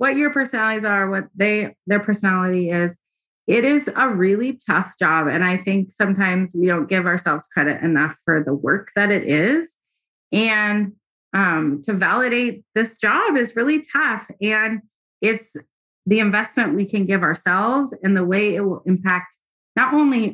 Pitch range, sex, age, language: 185-250 Hz, female, 30-49, English